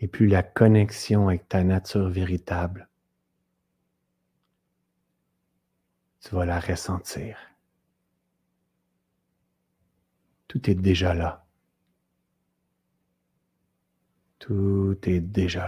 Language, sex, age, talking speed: French, male, 50-69, 75 wpm